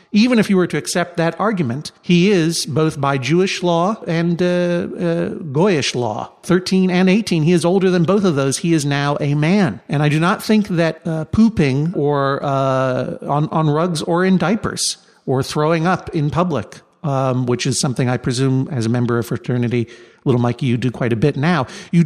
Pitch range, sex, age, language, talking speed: 135-175 Hz, male, 50-69, English, 205 wpm